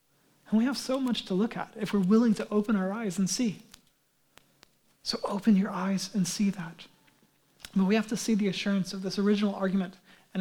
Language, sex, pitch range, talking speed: English, male, 190-220 Hz, 210 wpm